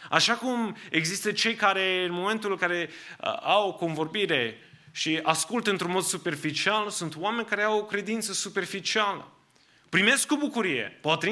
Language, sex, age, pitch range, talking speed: English, male, 30-49, 160-225 Hz, 155 wpm